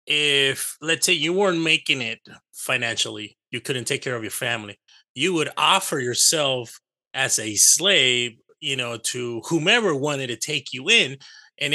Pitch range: 125-155 Hz